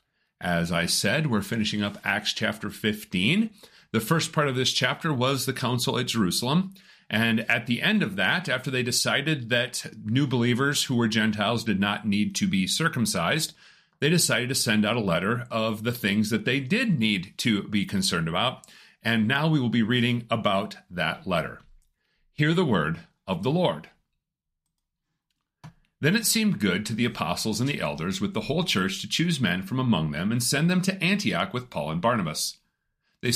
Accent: American